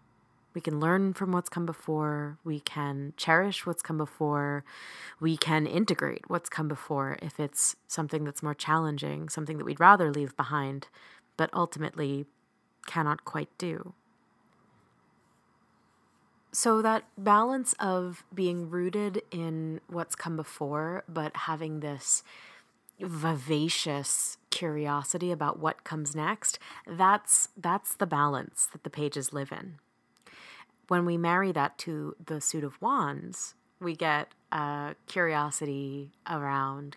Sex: female